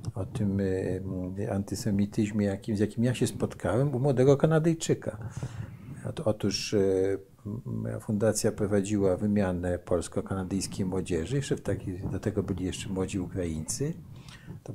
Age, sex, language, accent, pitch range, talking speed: 50-69, male, Polish, native, 100-125 Hz, 125 wpm